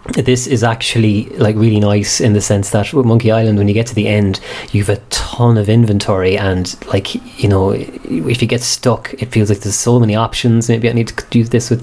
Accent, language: Irish, English